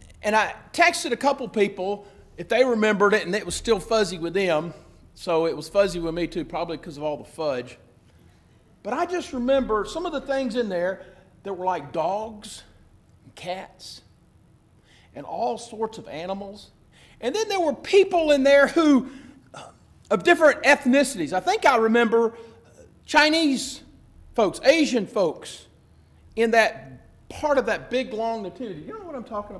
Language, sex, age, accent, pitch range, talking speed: English, male, 40-59, American, 165-265 Hz, 170 wpm